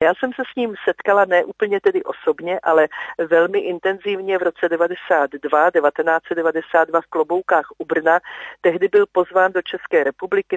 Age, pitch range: 40-59, 165-205 Hz